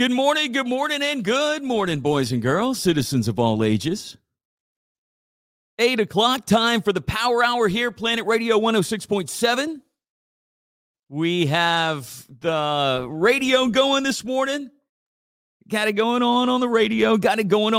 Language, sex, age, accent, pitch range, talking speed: English, male, 40-59, American, 140-210 Hz, 140 wpm